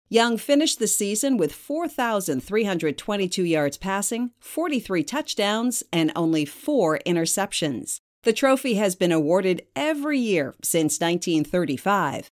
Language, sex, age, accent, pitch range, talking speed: English, female, 50-69, American, 170-250 Hz, 110 wpm